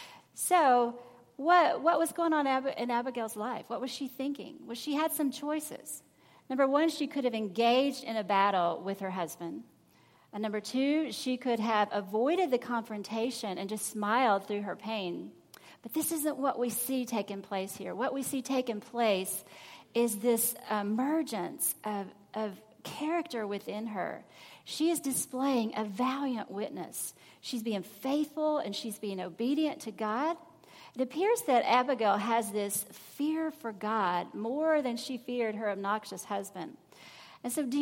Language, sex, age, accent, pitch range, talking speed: English, female, 40-59, American, 215-275 Hz, 160 wpm